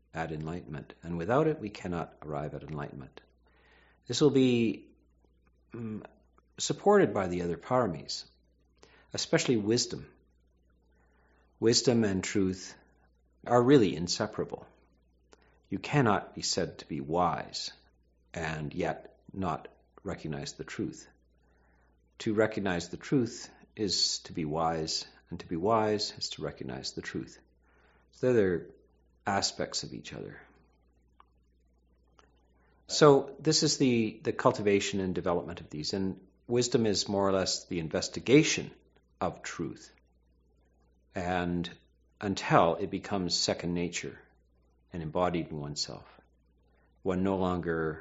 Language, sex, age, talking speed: English, male, 50-69, 120 wpm